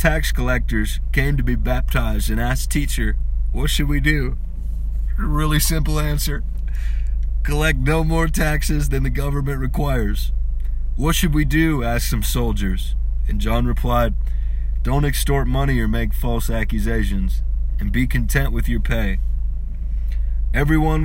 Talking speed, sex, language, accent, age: 140 wpm, male, English, American, 30-49